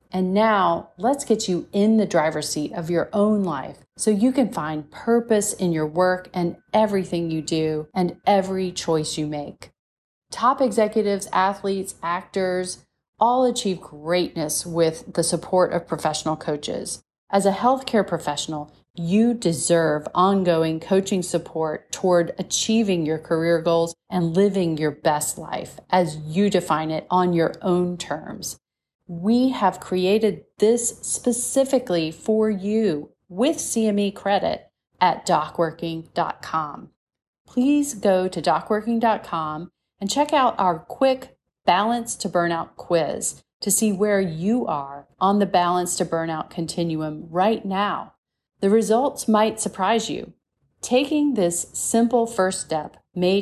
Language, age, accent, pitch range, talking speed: English, 40-59, American, 165-215 Hz, 135 wpm